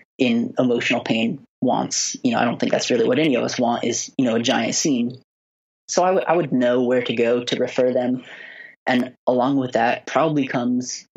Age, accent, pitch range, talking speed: 20-39, American, 120-135 Hz, 210 wpm